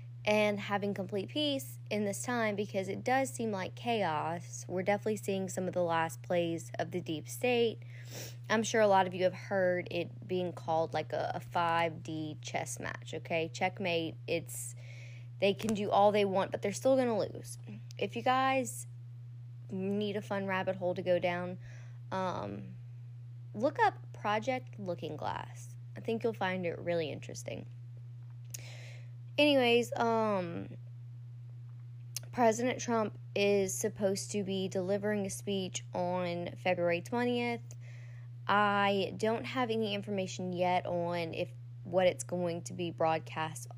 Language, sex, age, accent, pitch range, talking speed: English, female, 10-29, American, 120-190 Hz, 150 wpm